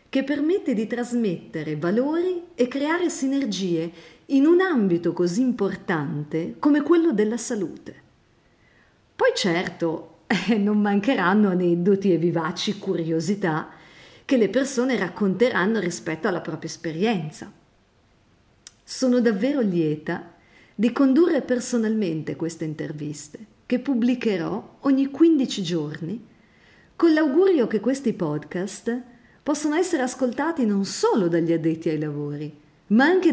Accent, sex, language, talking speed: native, female, Italian, 115 wpm